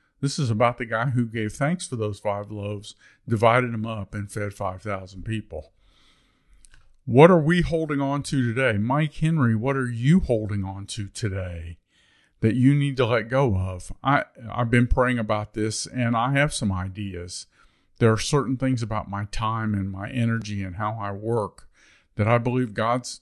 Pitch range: 100-125 Hz